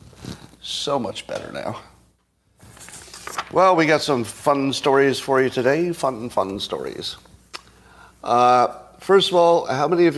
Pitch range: 100-130 Hz